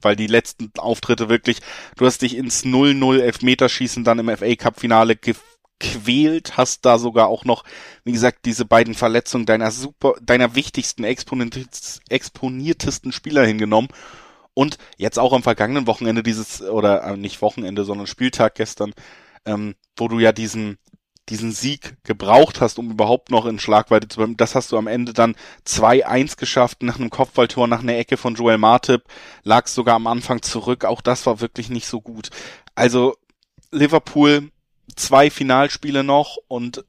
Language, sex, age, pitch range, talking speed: German, male, 20-39, 115-130 Hz, 160 wpm